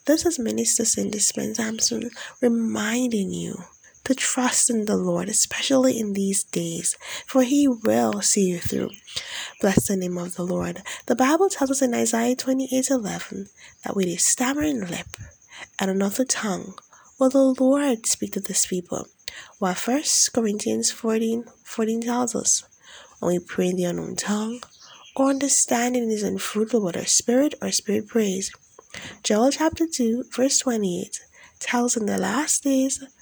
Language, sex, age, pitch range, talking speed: English, female, 10-29, 195-265 Hz, 155 wpm